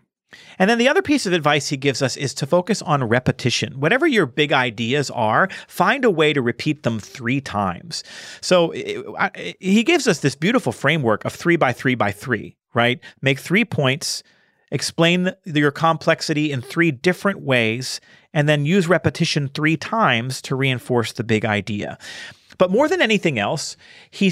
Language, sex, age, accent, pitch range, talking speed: English, male, 40-59, American, 120-165 Hz, 170 wpm